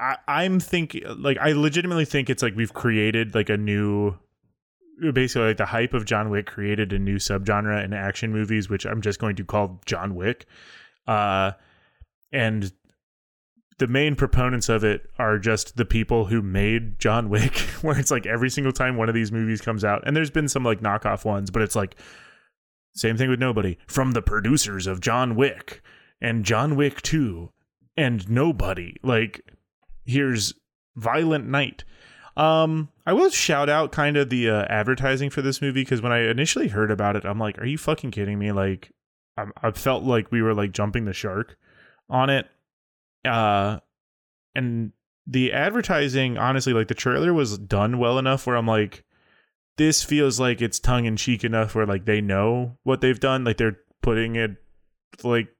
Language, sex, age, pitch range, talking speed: English, male, 20-39, 105-135 Hz, 180 wpm